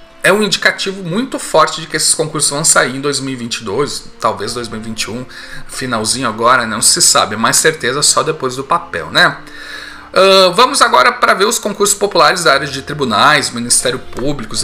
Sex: male